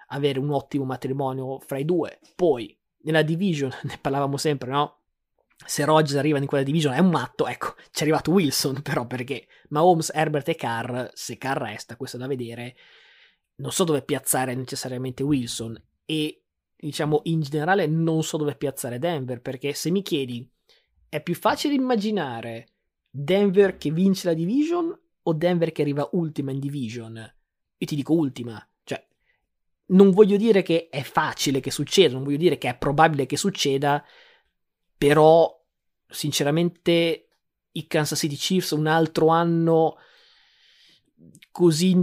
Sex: male